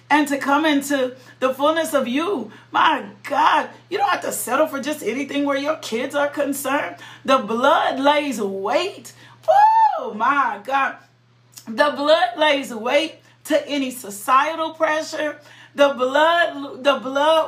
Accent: American